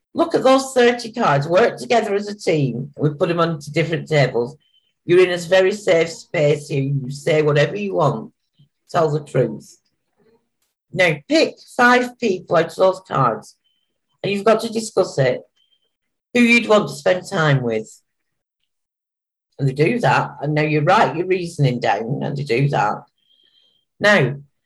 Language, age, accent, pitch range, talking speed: English, 50-69, British, 140-190 Hz, 165 wpm